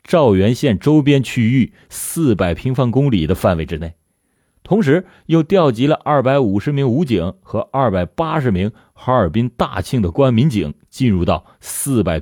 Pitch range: 100-165 Hz